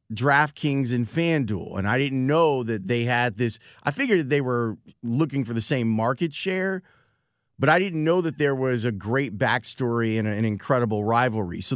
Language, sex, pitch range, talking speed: English, male, 115-145 Hz, 190 wpm